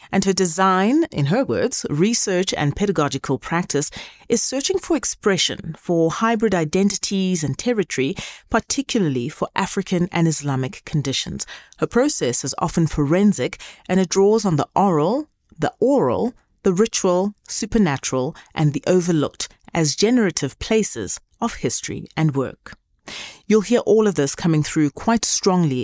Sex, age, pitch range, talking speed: female, 30-49, 145-205 Hz, 140 wpm